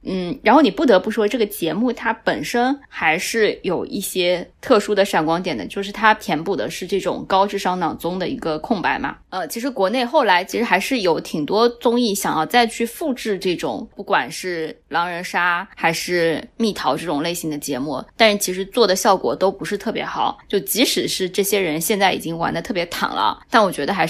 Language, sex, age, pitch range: Chinese, female, 20-39, 175-225 Hz